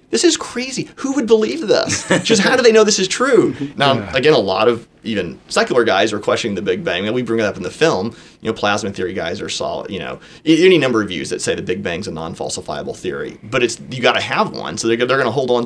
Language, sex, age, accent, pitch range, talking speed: English, male, 30-49, American, 110-140 Hz, 270 wpm